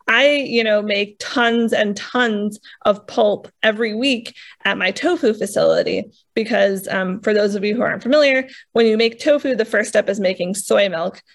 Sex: female